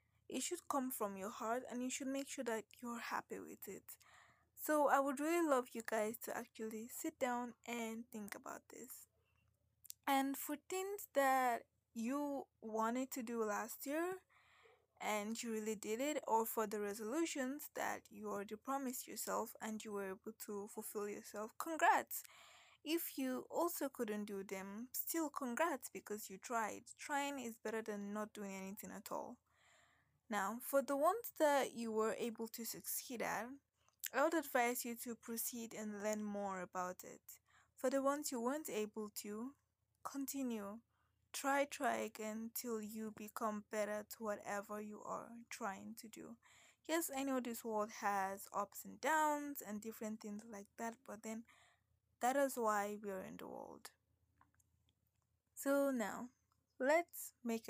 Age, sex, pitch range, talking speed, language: 20-39, female, 210-275 Hz, 160 wpm, English